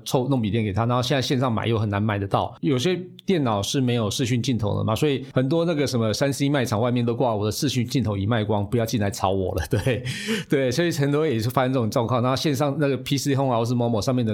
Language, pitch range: Chinese, 115-140 Hz